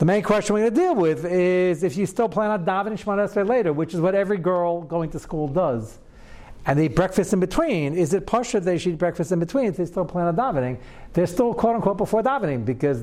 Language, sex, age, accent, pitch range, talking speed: English, male, 60-79, American, 150-200 Hz, 250 wpm